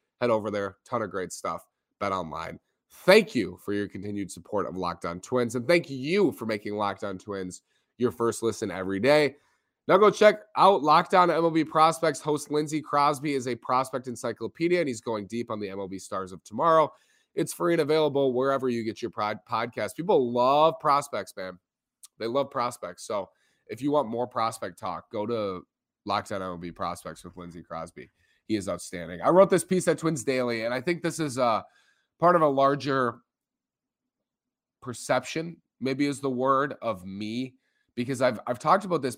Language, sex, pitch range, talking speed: English, male, 105-150 Hz, 180 wpm